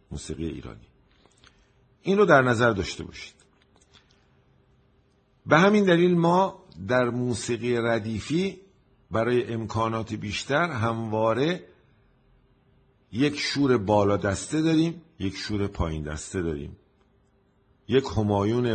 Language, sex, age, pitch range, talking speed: Persian, male, 50-69, 100-135 Hz, 100 wpm